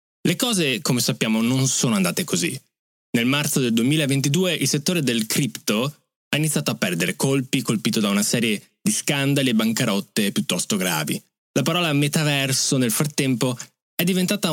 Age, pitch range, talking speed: 20-39, 120-180 Hz, 155 wpm